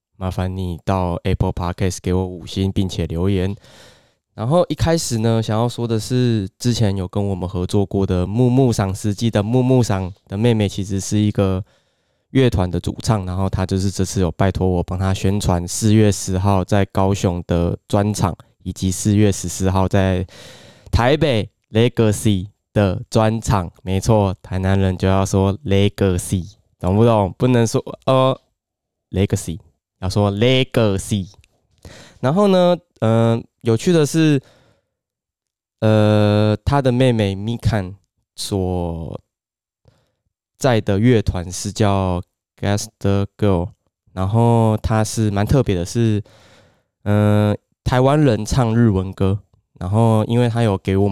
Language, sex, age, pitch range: Chinese, male, 20-39, 95-115 Hz